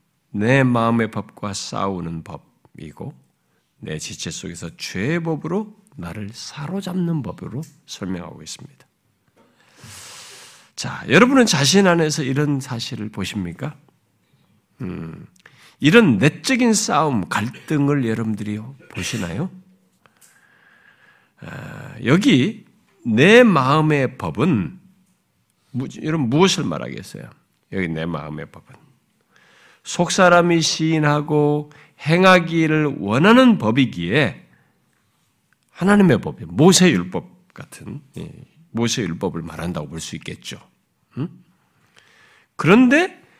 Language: Korean